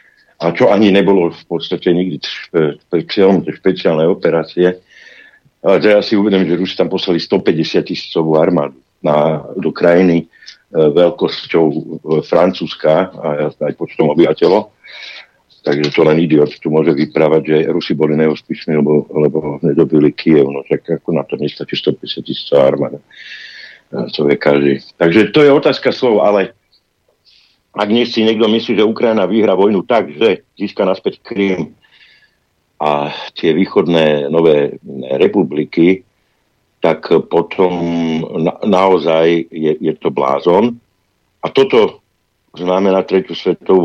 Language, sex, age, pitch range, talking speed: Slovak, male, 60-79, 80-100 Hz, 135 wpm